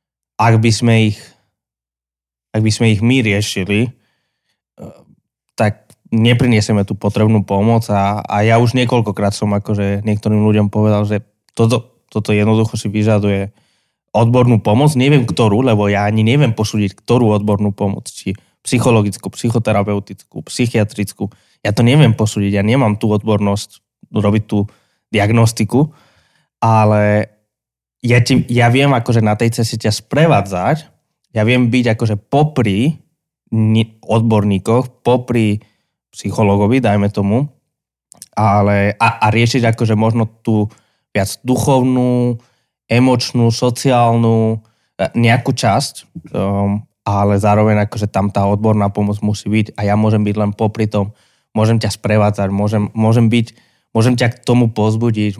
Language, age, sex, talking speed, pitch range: Slovak, 20-39, male, 130 wpm, 105-120 Hz